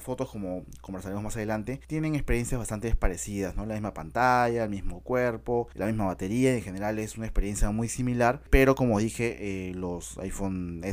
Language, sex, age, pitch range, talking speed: Spanish, male, 20-39, 105-130 Hz, 175 wpm